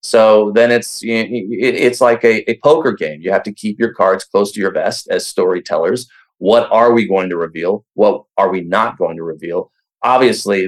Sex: male